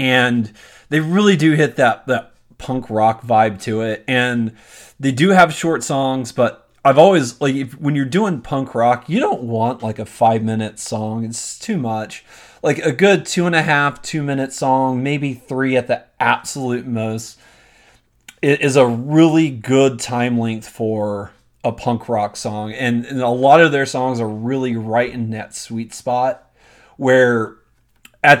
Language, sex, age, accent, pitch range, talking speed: English, male, 30-49, American, 115-135 Hz, 160 wpm